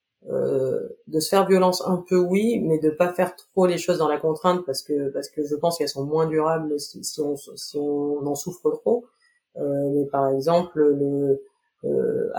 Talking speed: 205 wpm